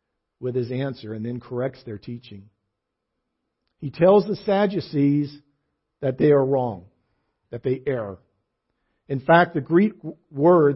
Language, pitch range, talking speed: English, 120-155 Hz, 135 wpm